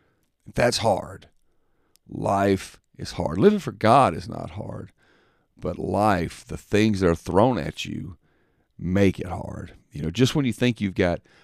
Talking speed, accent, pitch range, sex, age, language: 165 wpm, American, 85-110 Hz, male, 40-59, English